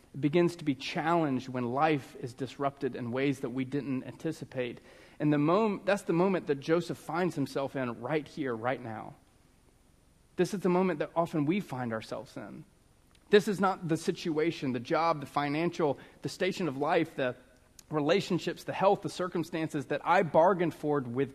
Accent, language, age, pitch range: American, English, 30-49, 135-175 Hz